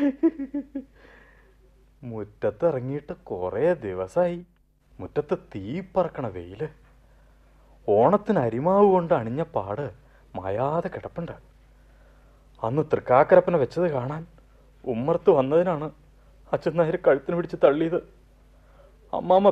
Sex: male